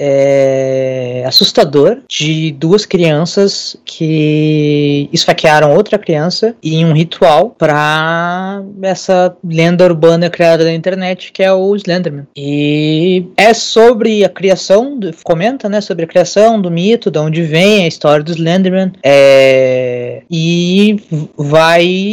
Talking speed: 125 wpm